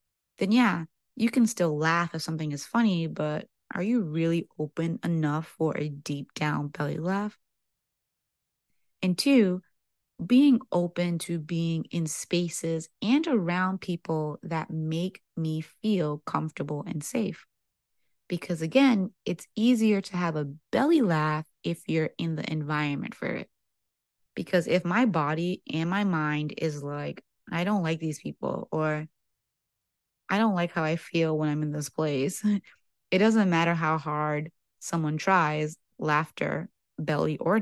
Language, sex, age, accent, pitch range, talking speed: English, female, 20-39, American, 150-190 Hz, 145 wpm